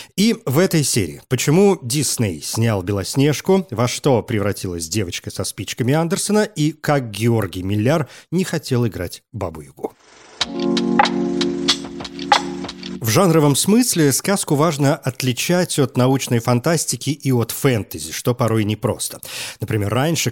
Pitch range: 110-155 Hz